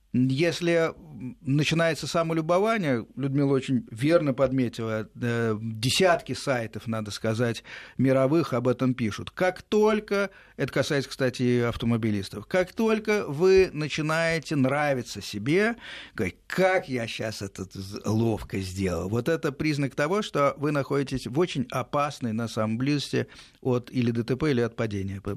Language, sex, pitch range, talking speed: Russian, male, 115-155 Hz, 125 wpm